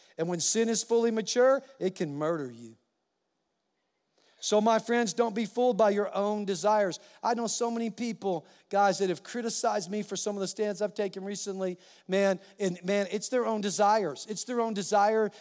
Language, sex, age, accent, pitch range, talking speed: English, male, 50-69, American, 190-240 Hz, 190 wpm